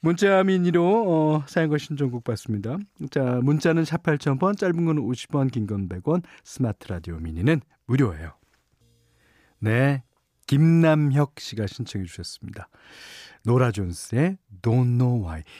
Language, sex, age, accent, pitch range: Korean, male, 40-59, native, 115-175 Hz